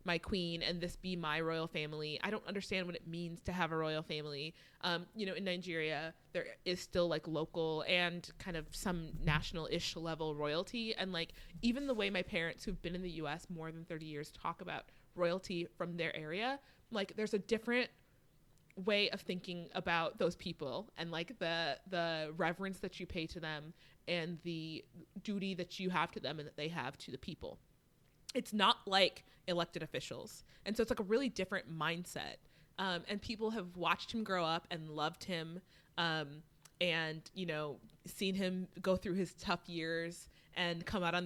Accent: American